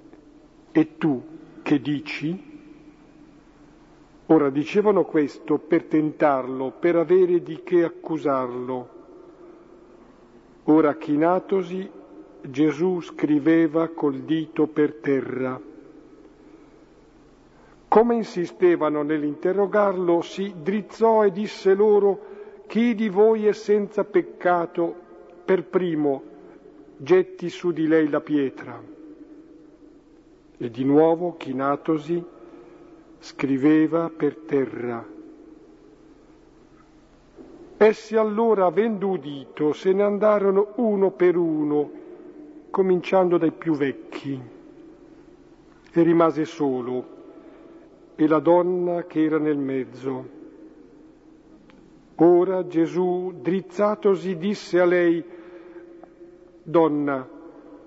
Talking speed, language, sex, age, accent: 85 wpm, Italian, male, 50-69, native